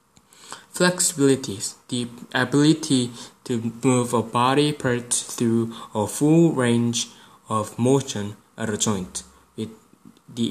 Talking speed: 110 wpm